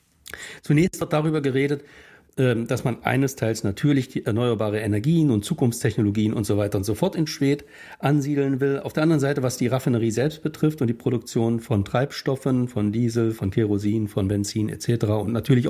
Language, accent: German, German